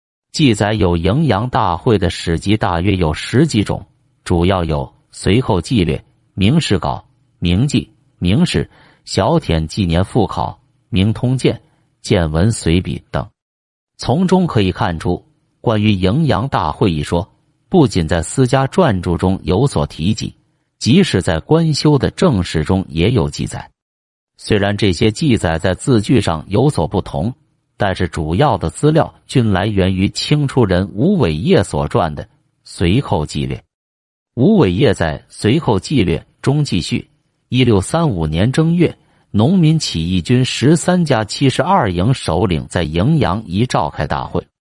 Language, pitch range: Chinese, 90-135 Hz